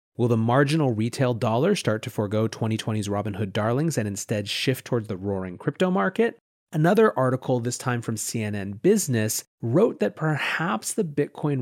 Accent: American